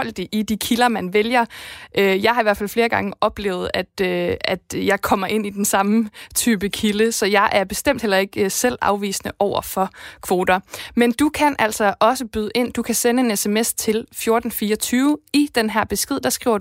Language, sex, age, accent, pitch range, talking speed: Danish, female, 20-39, native, 195-235 Hz, 190 wpm